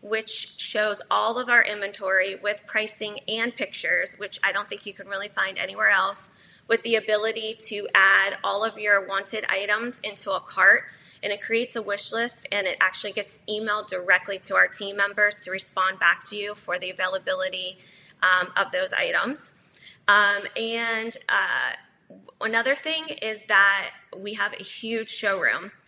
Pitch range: 195-225 Hz